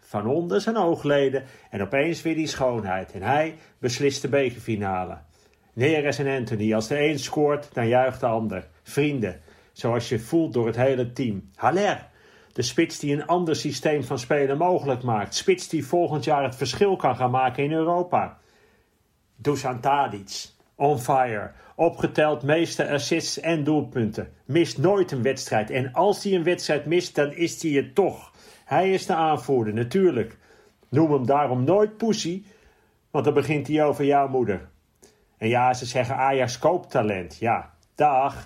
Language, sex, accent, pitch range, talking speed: Dutch, male, Dutch, 125-155 Hz, 160 wpm